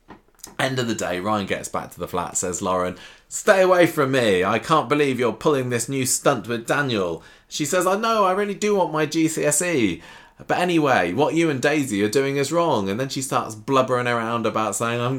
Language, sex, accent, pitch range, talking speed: English, male, British, 95-140 Hz, 220 wpm